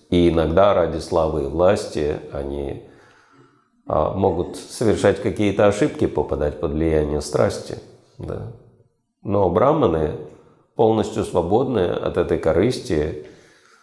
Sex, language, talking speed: male, Russian, 95 wpm